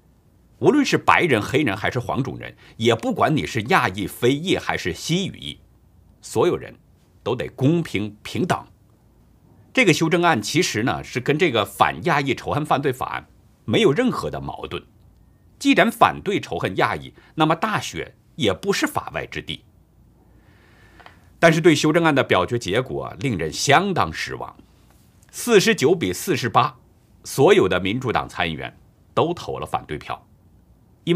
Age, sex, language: 50-69, male, Chinese